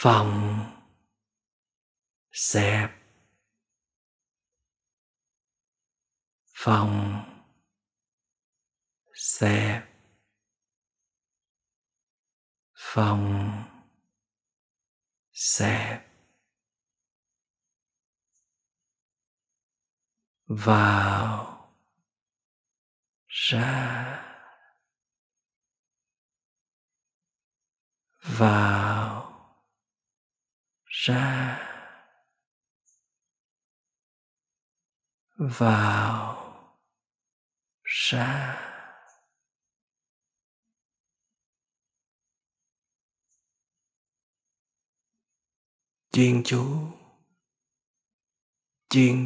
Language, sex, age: Vietnamese, male, 50-69